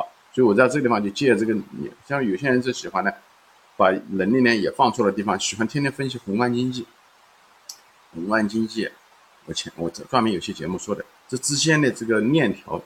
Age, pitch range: 50-69, 115-160 Hz